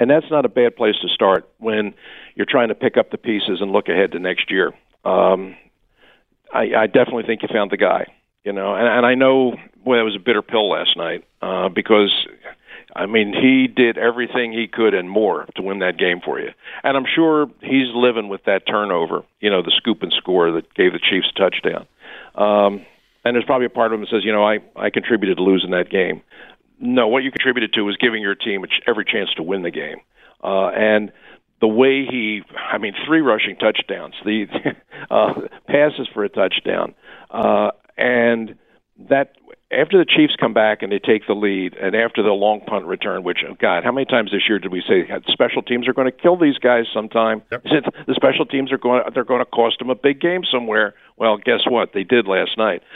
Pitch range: 105-130 Hz